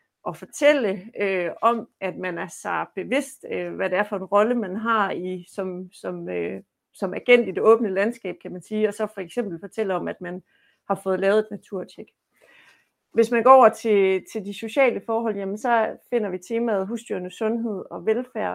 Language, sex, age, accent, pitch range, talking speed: Danish, female, 30-49, native, 190-230 Hz, 200 wpm